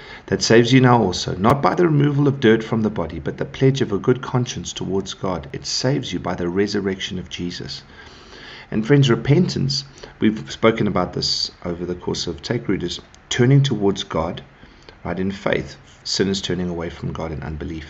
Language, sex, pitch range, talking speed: English, male, 90-120 Hz, 195 wpm